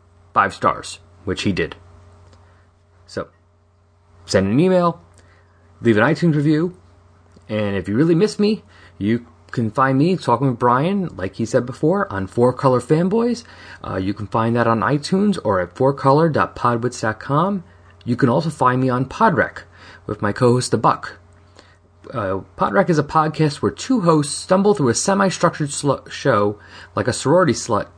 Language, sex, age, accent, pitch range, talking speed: English, male, 30-49, American, 90-145 Hz, 160 wpm